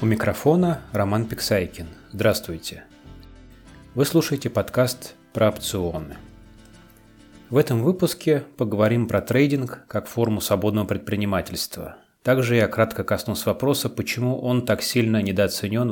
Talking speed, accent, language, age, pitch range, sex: 115 wpm, native, Russian, 30-49, 95-125 Hz, male